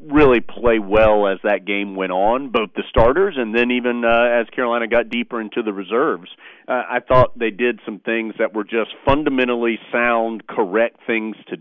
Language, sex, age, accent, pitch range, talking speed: English, male, 40-59, American, 105-120 Hz, 190 wpm